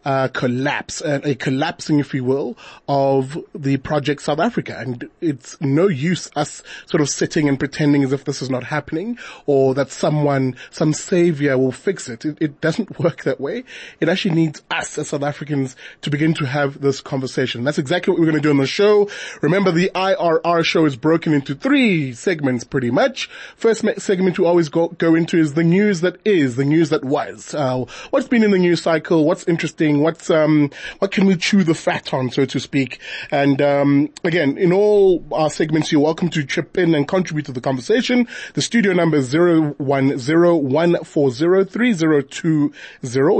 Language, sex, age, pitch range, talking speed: English, male, 30-49, 140-180 Hz, 190 wpm